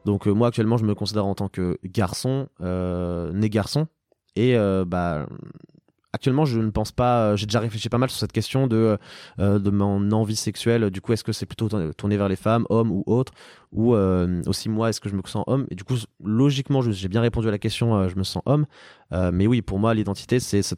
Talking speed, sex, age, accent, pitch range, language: 240 wpm, male, 20-39, French, 95-115 Hz, French